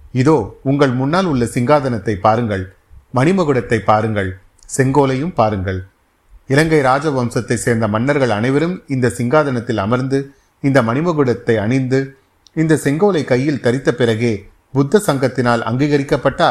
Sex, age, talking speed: male, 30-49, 105 wpm